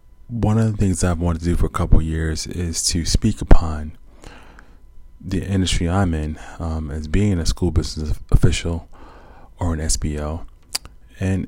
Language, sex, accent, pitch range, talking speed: English, male, American, 80-90 Hz, 165 wpm